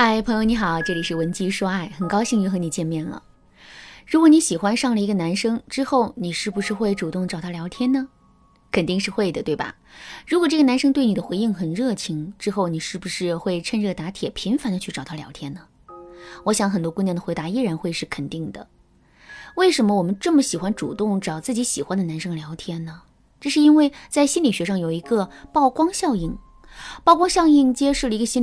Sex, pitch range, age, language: female, 175-250 Hz, 20-39, Chinese